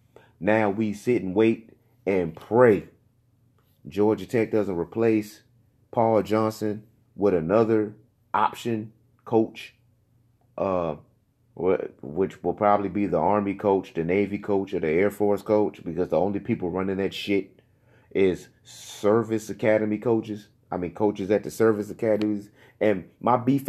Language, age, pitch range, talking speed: English, 30-49, 100-120 Hz, 135 wpm